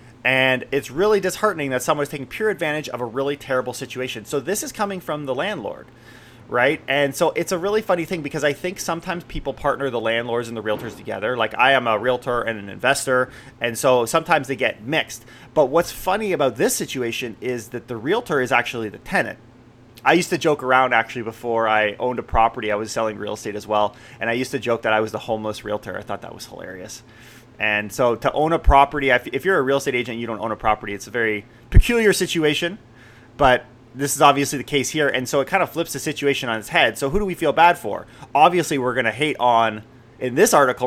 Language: English